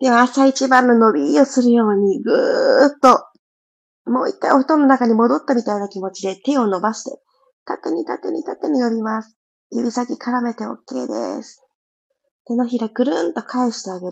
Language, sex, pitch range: Japanese, female, 210-275 Hz